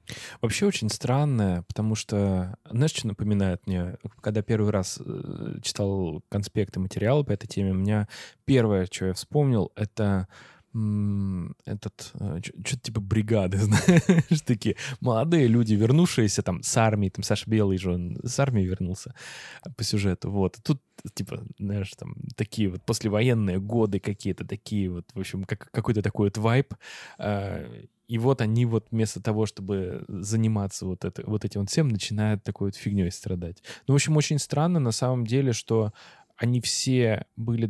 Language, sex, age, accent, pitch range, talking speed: Russian, male, 20-39, native, 100-120 Hz, 150 wpm